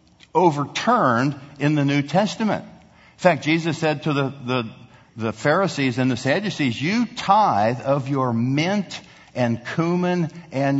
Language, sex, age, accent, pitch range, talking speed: English, male, 60-79, American, 125-175 Hz, 140 wpm